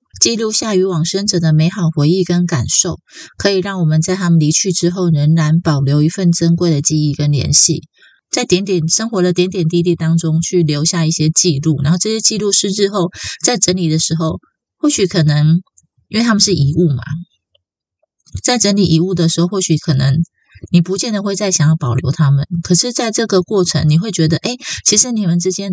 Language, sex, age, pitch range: Chinese, female, 20-39, 155-185 Hz